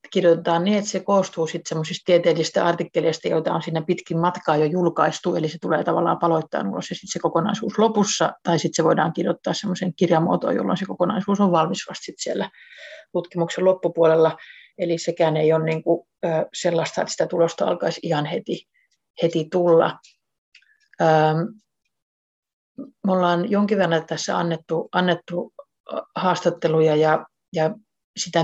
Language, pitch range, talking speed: Finnish, 165-190 Hz, 130 wpm